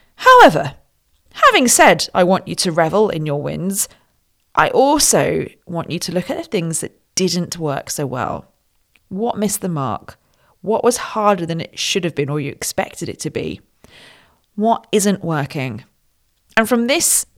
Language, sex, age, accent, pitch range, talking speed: English, female, 40-59, British, 150-220 Hz, 170 wpm